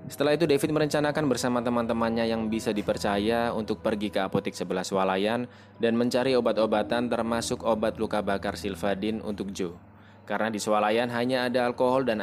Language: Indonesian